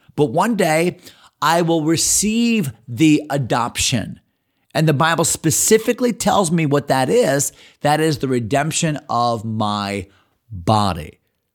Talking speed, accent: 125 wpm, American